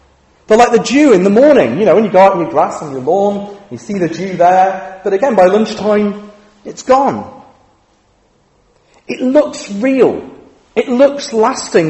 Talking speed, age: 180 wpm, 40-59